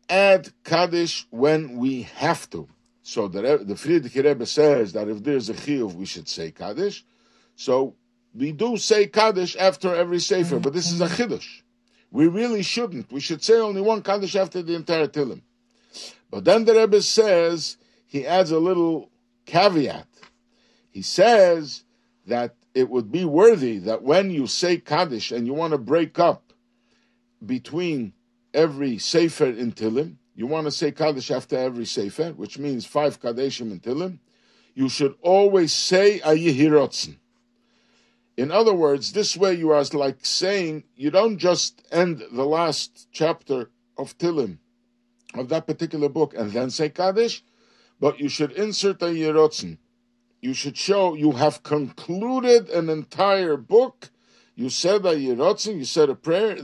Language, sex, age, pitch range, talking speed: English, male, 50-69, 135-195 Hz, 155 wpm